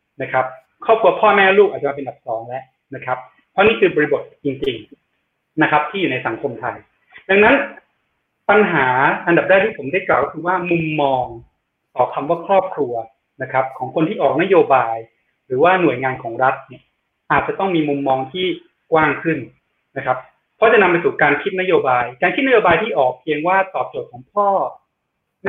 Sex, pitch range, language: male, 140-200 Hz, Thai